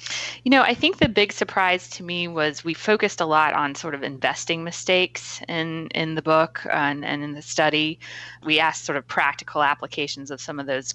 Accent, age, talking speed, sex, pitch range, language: American, 20-39, 210 wpm, female, 140-170 Hz, English